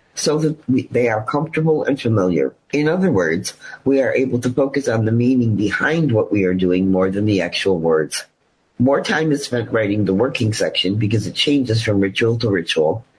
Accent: American